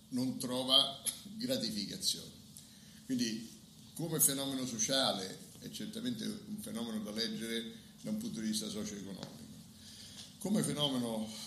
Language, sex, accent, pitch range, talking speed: Italian, male, native, 135-225 Hz, 110 wpm